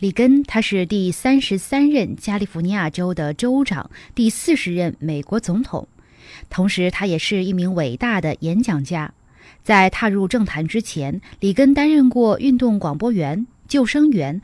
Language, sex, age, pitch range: Chinese, female, 20-39, 165-240 Hz